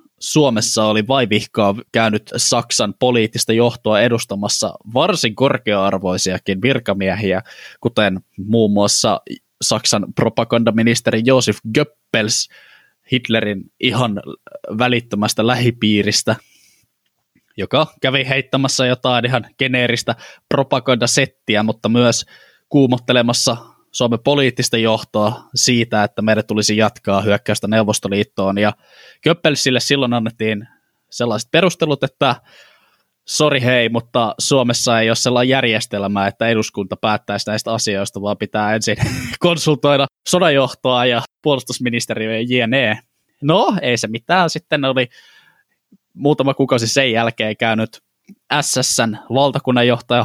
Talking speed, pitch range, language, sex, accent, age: 100 wpm, 110-135 Hz, Finnish, male, native, 10-29